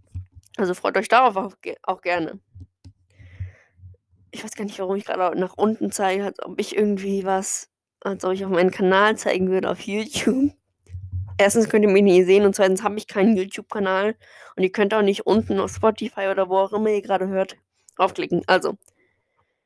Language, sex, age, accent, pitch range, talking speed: German, female, 10-29, German, 175-205 Hz, 190 wpm